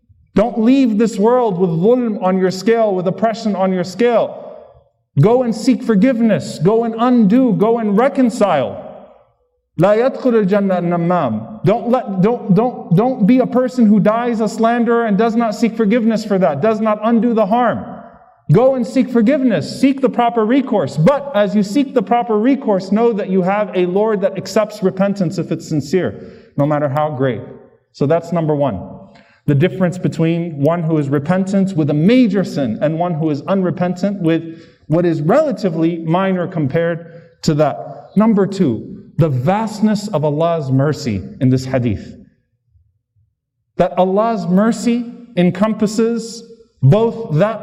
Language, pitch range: English, 170-230 Hz